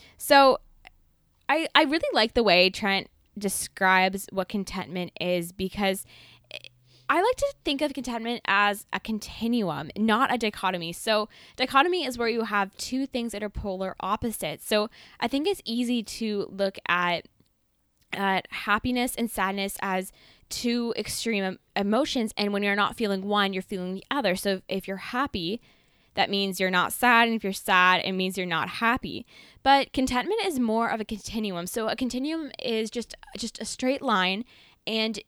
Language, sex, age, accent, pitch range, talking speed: English, female, 10-29, American, 195-245 Hz, 165 wpm